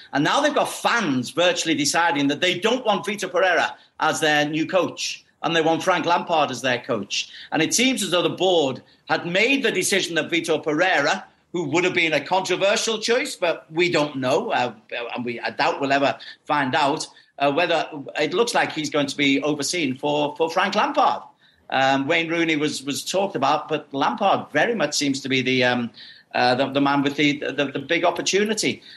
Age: 50-69